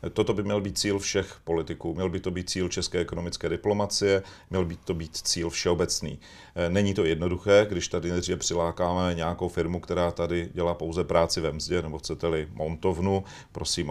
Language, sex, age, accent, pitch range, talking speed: Czech, male, 40-59, native, 85-95 Hz, 175 wpm